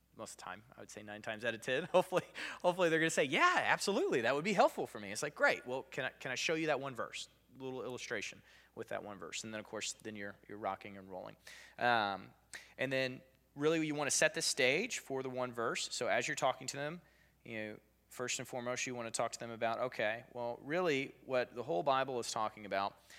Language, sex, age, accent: English, male, 30-49, American